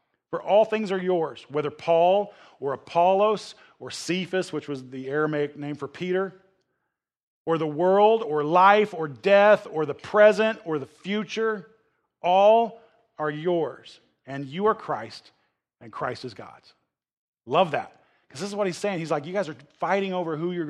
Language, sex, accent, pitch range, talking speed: English, male, American, 155-205 Hz, 170 wpm